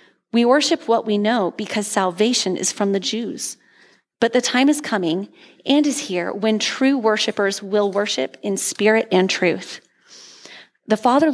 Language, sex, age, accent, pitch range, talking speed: English, female, 30-49, American, 195-245 Hz, 160 wpm